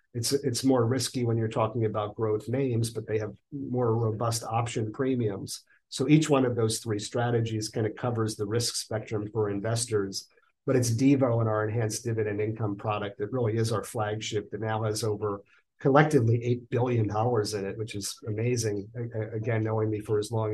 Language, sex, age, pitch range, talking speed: English, male, 40-59, 110-125 Hz, 185 wpm